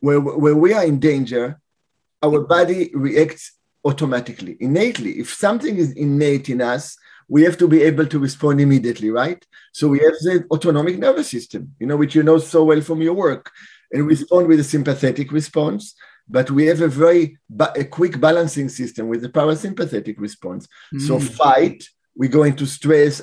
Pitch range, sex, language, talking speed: 130-155 Hz, male, English, 175 wpm